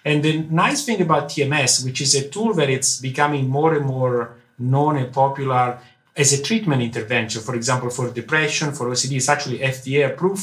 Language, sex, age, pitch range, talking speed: English, male, 50-69, 125-155 Hz, 195 wpm